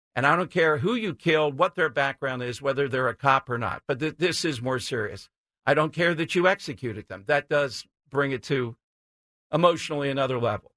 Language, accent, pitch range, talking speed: English, American, 135-180 Hz, 205 wpm